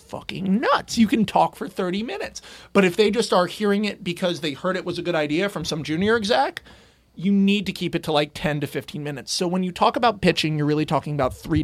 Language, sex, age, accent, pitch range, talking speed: English, male, 30-49, American, 155-205 Hz, 255 wpm